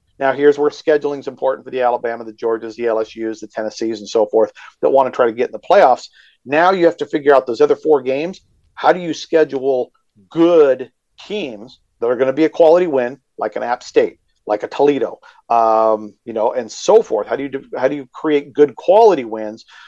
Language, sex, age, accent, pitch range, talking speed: English, male, 50-69, American, 120-190 Hz, 225 wpm